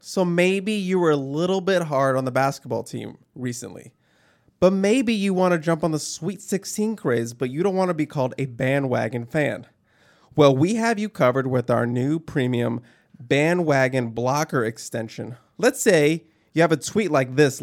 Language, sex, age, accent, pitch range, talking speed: English, male, 20-39, American, 120-165 Hz, 185 wpm